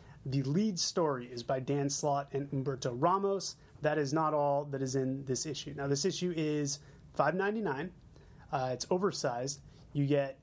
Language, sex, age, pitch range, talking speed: English, male, 30-49, 140-170 Hz, 185 wpm